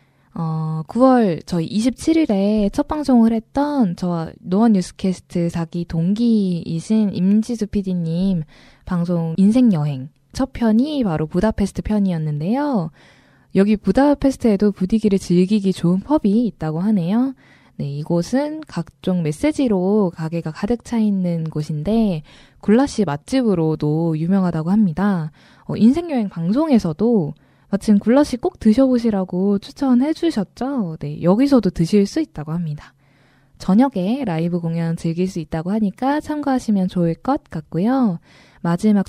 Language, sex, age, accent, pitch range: Korean, female, 10-29, native, 170-235 Hz